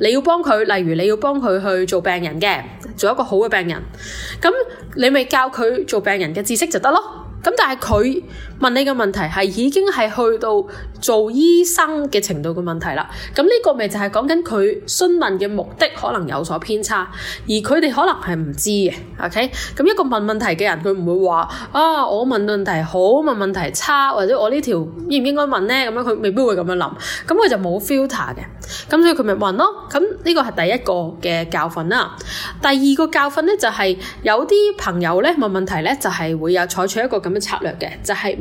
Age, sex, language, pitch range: 10-29, female, Chinese, 185-290 Hz